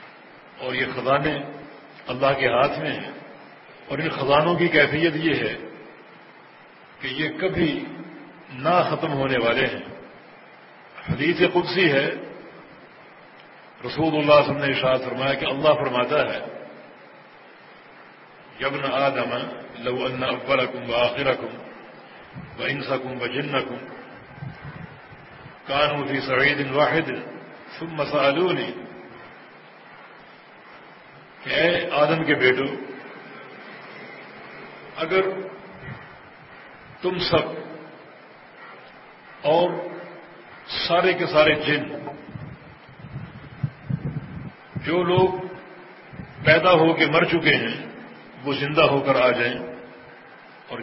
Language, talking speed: English, 95 wpm